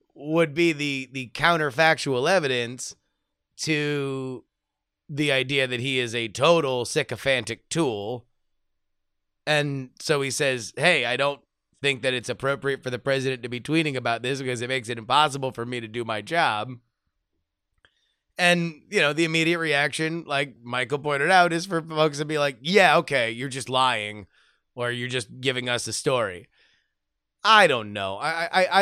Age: 30-49